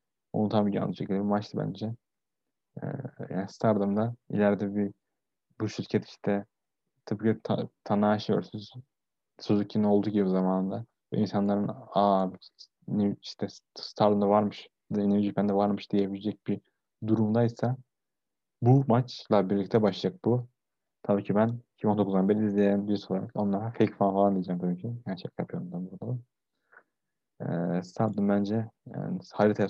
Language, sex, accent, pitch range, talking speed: Turkish, male, native, 95-110 Hz, 125 wpm